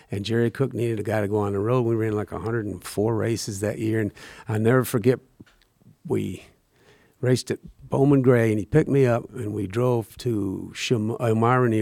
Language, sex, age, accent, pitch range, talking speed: English, male, 50-69, American, 105-125 Hz, 195 wpm